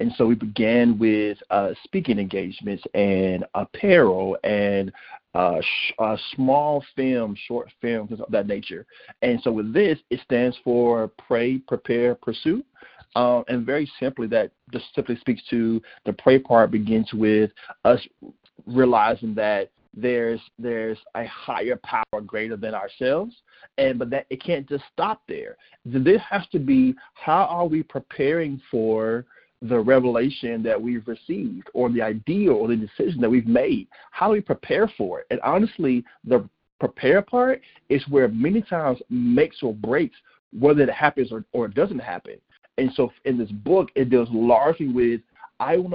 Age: 40-59